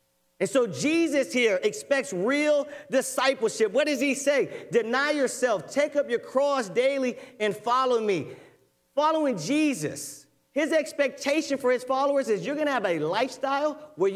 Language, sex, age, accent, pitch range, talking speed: English, male, 40-59, American, 215-295 Hz, 155 wpm